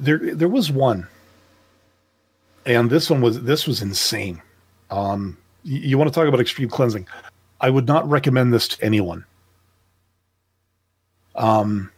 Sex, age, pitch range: male, 40-59, 90-130 Hz